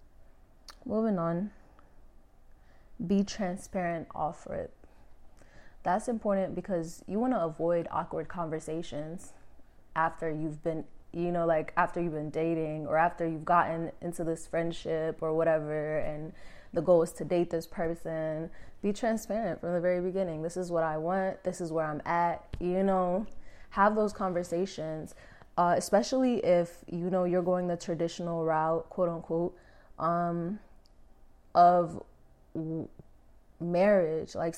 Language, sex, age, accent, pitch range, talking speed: English, female, 20-39, American, 160-185 Hz, 135 wpm